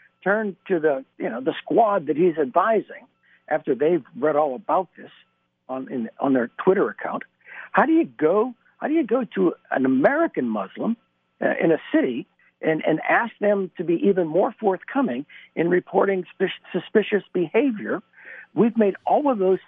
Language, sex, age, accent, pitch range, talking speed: English, male, 60-79, American, 175-250 Hz, 170 wpm